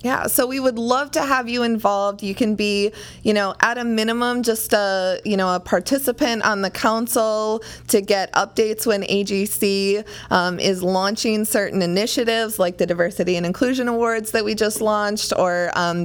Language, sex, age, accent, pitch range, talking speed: English, female, 20-39, American, 180-220 Hz, 180 wpm